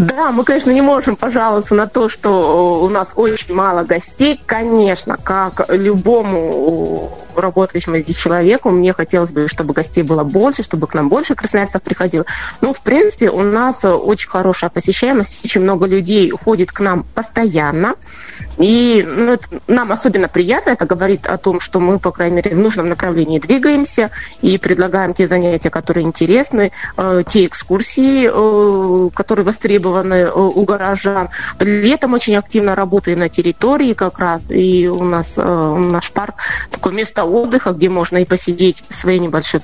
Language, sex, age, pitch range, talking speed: Russian, female, 20-39, 175-230 Hz, 155 wpm